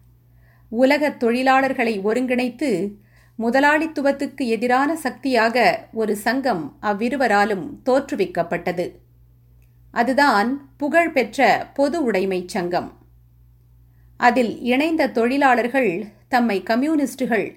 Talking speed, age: 70 wpm, 50-69